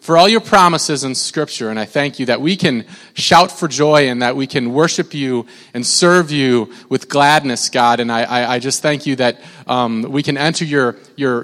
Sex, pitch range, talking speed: male, 115-150 Hz, 220 wpm